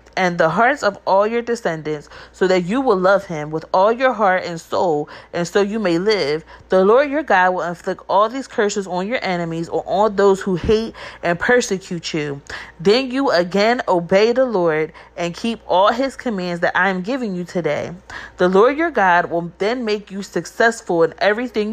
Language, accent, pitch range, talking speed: English, American, 170-225 Hz, 200 wpm